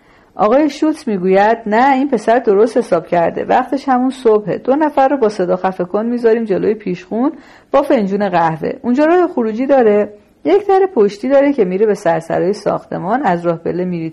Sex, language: female, Persian